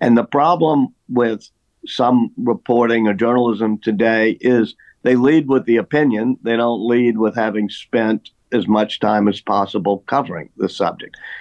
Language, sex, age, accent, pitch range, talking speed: English, male, 50-69, American, 110-140 Hz, 155 wpm